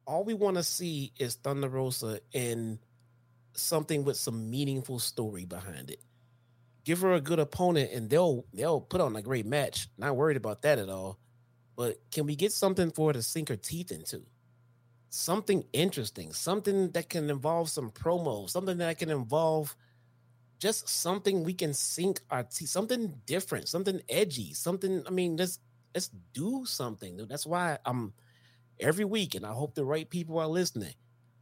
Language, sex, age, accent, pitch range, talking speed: English, male, 30-49, American, 120-165 Hz, 170 wpm